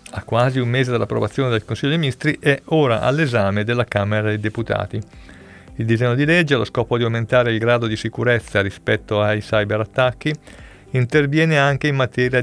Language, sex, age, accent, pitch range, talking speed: Italian, male, 50-69, native, 110-135 Hz, 170 wpm